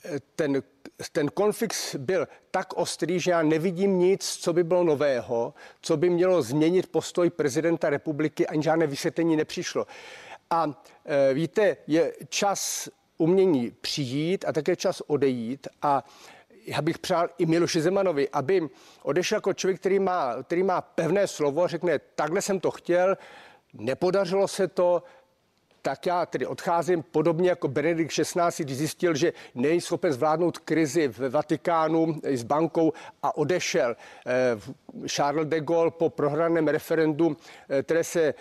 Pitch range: 155-180 Hz